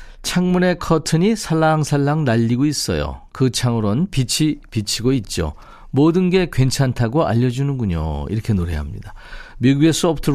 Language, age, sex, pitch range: Korean, 40-59, male, 110-160 Hz